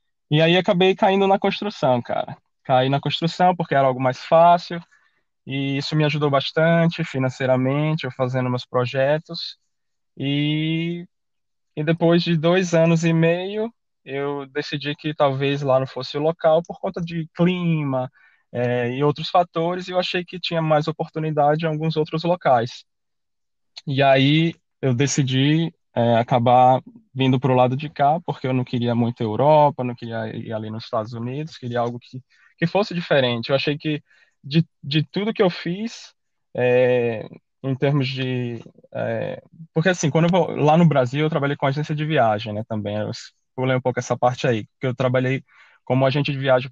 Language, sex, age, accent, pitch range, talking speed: Portuguese, male, 10-29, Brazilian, 130-165 Hz, 175 wpm